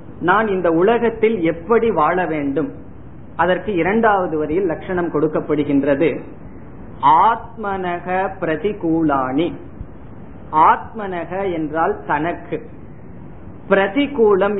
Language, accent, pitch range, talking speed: Tamil, native, 155-205 Hz, 65 wpm